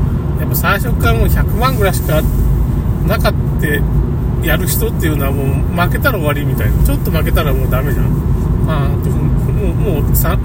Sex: male